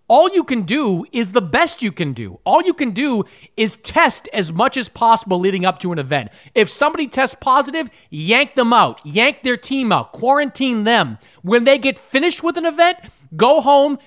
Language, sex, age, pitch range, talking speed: English, male, 30-49, 180-260 Hz, 200 wpm